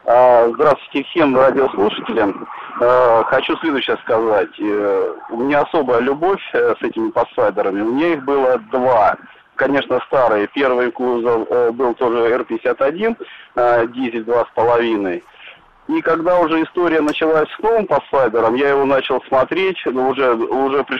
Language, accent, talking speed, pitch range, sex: Russian, native, 120 wpm, 130-170 Hz, male